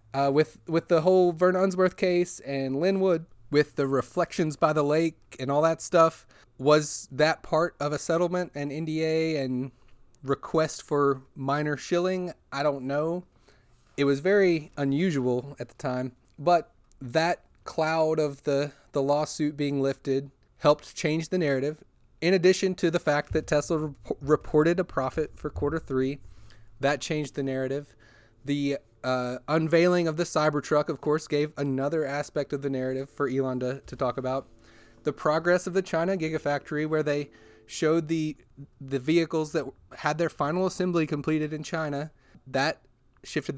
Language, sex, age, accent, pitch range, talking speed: English, male, 30-49, American, 135-165 Hz, 160 wpm